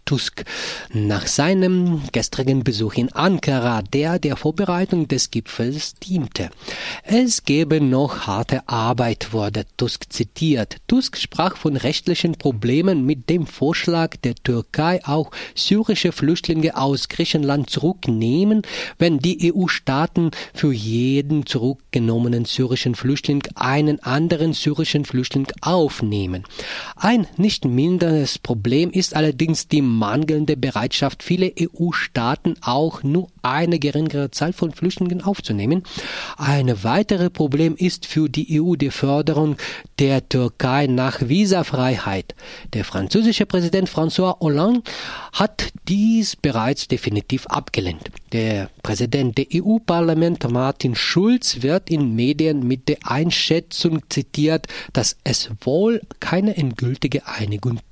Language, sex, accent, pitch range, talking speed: German, male, German, 125-170 Hz, 115 wpm